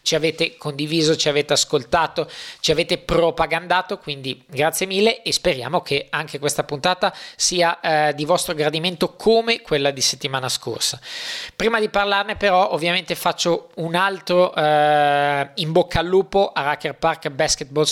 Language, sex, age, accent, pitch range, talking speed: Italian, male, 20-39, native, 145-175 Hz, 150 wpm